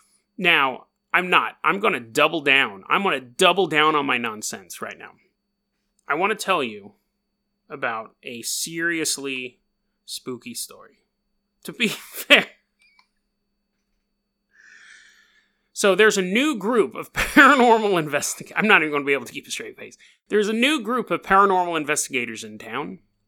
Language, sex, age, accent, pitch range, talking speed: English, male, 30-49, American, 140-205 Hz, 155 wpm